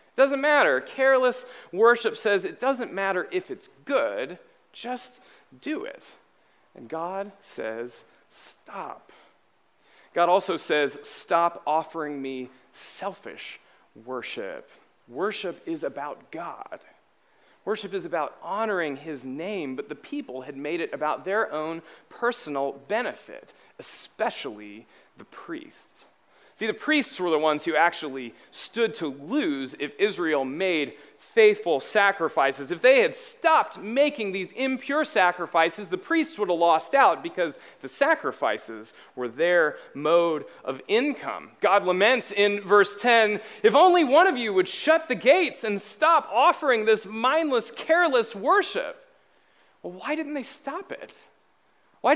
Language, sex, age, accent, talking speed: English, male, 30-49, American, 135 wpm